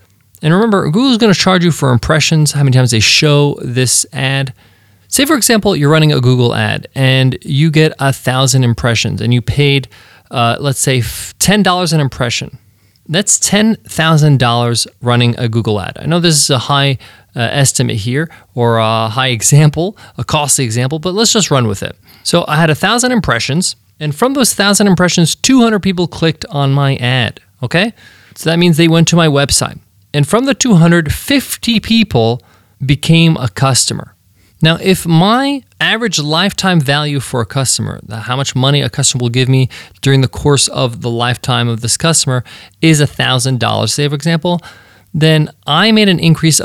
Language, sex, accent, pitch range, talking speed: English, male, American, 120-165 Hz, 180 wpm